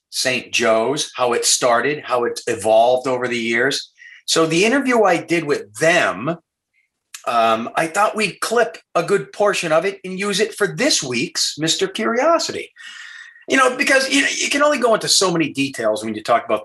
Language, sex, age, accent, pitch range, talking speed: English, male, 30-49, American, 125-215 Hz, 190 wpm